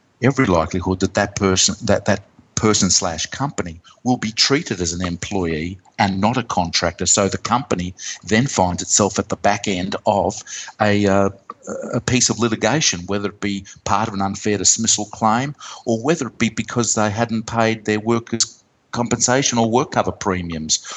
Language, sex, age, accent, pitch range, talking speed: English, male, 50-69, Australian, 95-115 Hz, 170 wpm